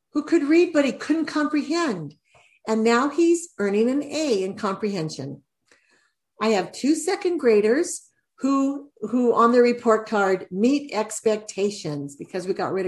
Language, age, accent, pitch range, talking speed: English, 50-69, American, 195-275 Hz, 150 wpm